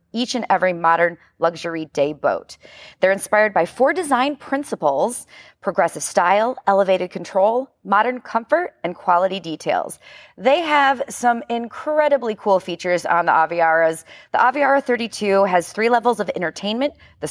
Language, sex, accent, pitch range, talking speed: English, female, American, 175-250 Hz, 140 wpm